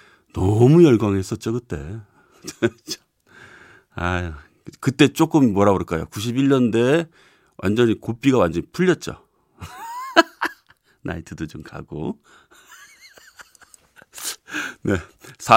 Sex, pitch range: male, 100-150 Hz